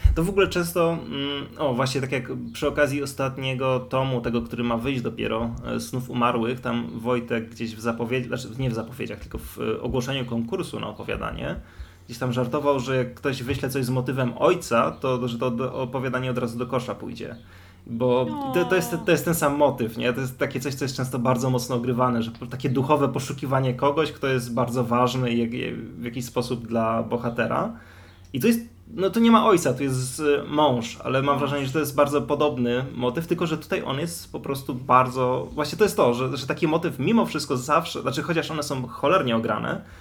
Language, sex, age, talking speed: Polish, male, 20-39, 200 wpm